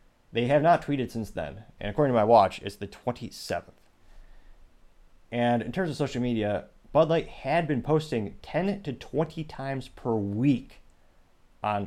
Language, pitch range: English, 95-125 Hz